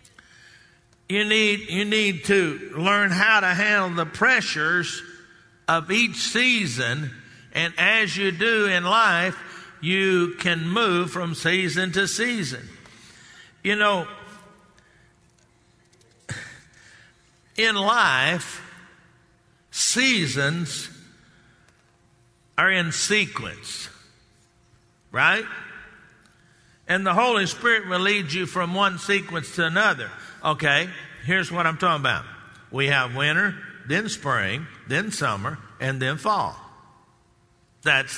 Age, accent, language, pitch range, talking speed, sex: 60-79, American, English, 140-205 Hz, 100 wpm, male